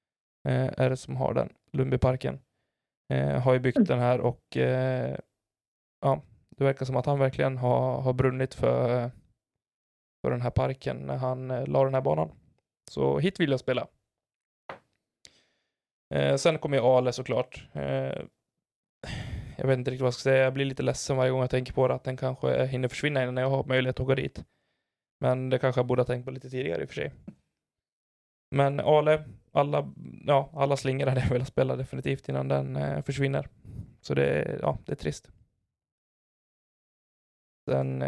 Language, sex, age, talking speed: Swedish, male, 20-39, 180 wpm